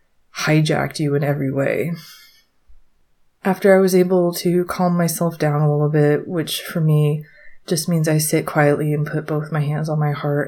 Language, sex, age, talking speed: English, female, 20-39, 185 wpm